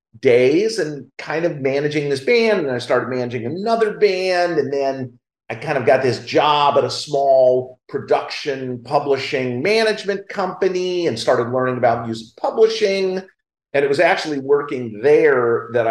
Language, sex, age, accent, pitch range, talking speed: English, male, 40-59, American, 120-170 Hz, 155 wpm